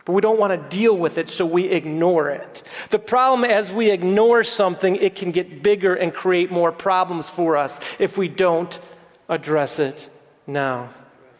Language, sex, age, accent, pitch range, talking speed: English, male, 40-59, American, 165-210 Hz, 175 wpm